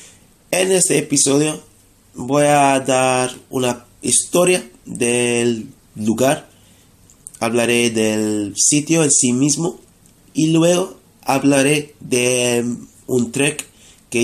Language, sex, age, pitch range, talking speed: Spanish, male, 30-49, 110-140 Hz, 95 wpm